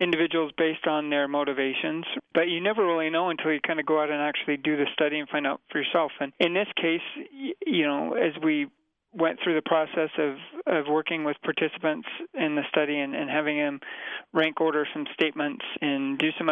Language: English